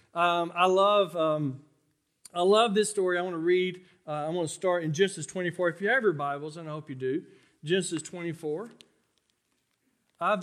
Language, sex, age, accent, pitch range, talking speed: English, male, 40-59, American, 155-190 Hz, 190 wpm